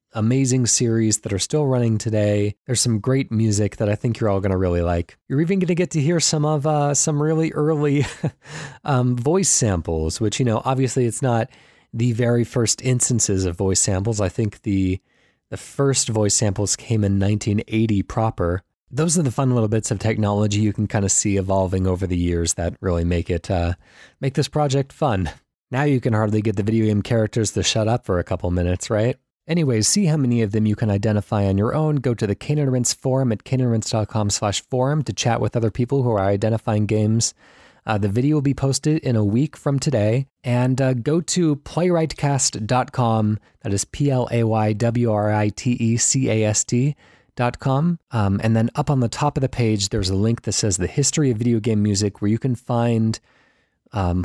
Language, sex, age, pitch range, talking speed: English, male, 20-39, 105-130 Hz, 200 wpm